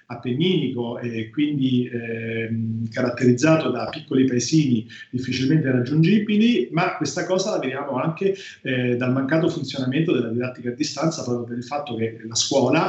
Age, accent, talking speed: 40-59, native, 145 wpm